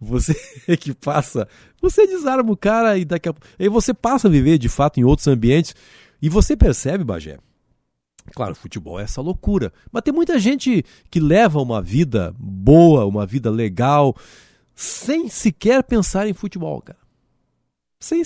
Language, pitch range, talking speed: Portuguese, 115-180 Hz, 160 wpm